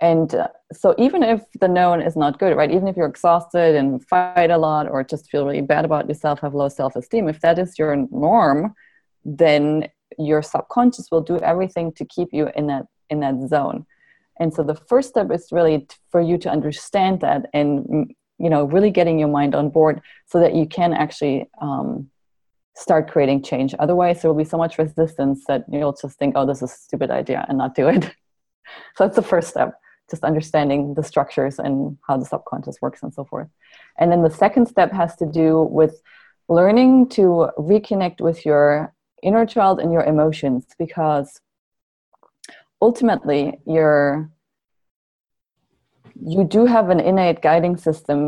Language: English